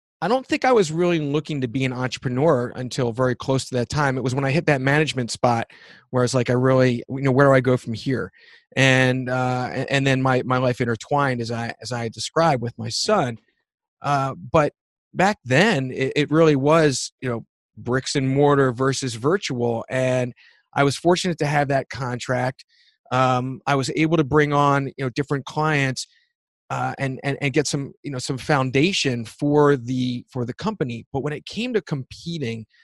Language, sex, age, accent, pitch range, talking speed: English, male, 30-49, American, 125-145 Hz, 200 wpm